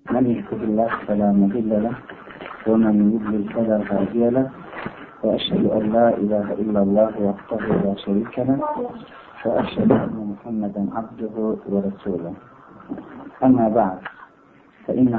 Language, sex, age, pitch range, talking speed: Turkish, male, 50-69, 100-120 Hz, 110 wpm